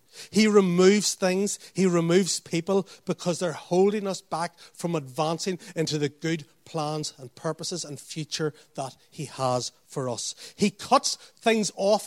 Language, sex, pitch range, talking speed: English, male, 150-195 Hz, 150 wpm